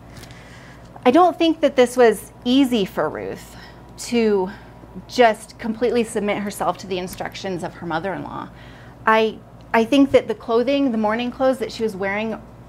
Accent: American